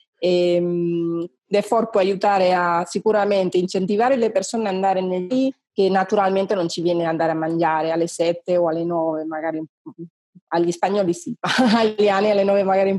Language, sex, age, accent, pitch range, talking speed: Italian, female, 30-49, native, 170-200 Hz, 160 wpm